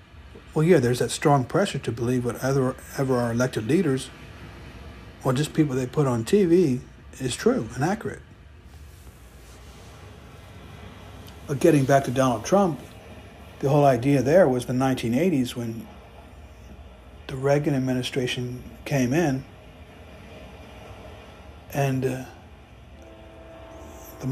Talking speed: 115 wpm